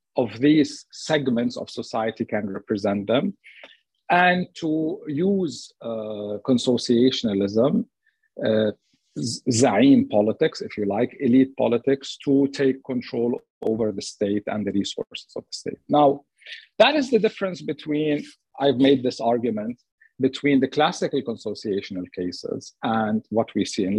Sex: male